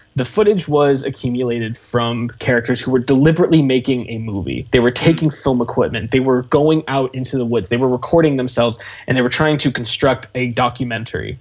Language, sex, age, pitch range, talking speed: English, male, 20-39, 120-145 Hz, 190 wpm